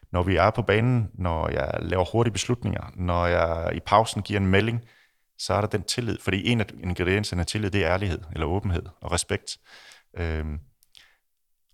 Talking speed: 185 wpm